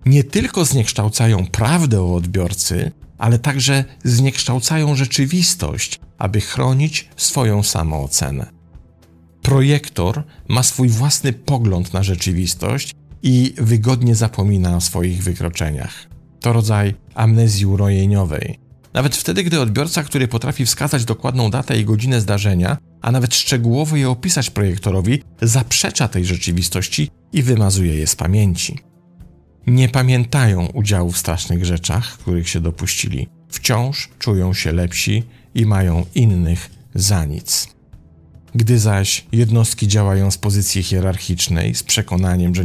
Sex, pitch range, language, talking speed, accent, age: male, 90-125 Hz, Polish, 120 wpm, native, 50-69